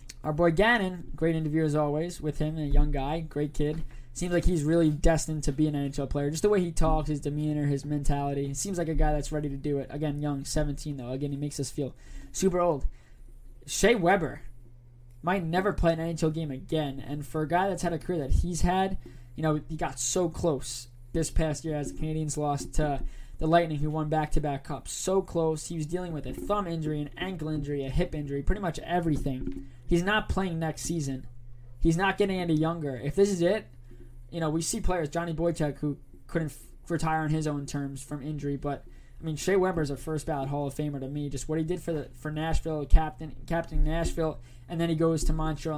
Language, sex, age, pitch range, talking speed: English, male, 20-39, 145-165 Hz, 225 wpm